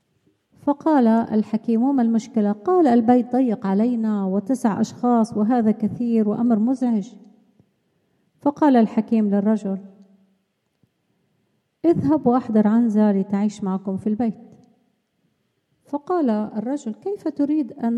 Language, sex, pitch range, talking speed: Arabic, female, 210-250 Hz, 95 wpm